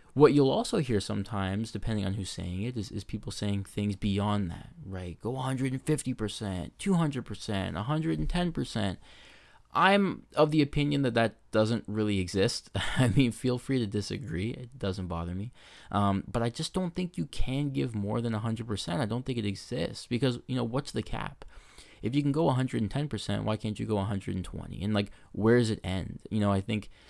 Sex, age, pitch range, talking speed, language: male, 20-39, 95-120 Hz, 185 wpm, English